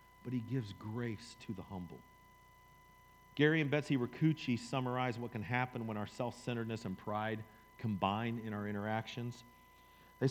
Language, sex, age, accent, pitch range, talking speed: English, male, 40-59, American, 110-160 Hz, 145 wpm